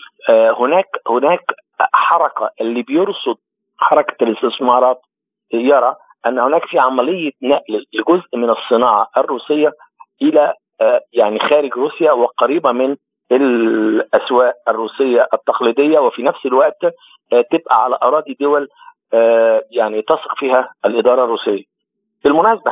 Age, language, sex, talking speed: 50-69, Arabic, male, 105 wpm